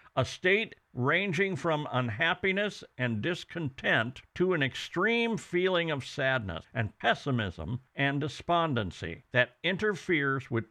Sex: male